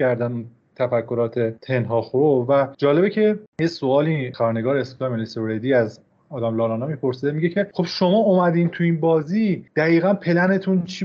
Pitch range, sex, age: 120-160 Hz, male, 30-49